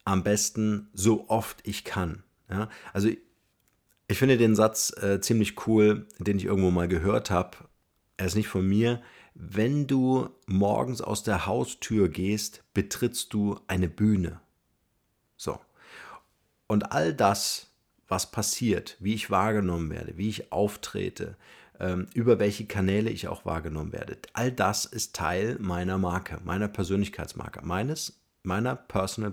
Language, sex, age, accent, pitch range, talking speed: German, male, 40-59, German, 90-110 Hz, 140 wpm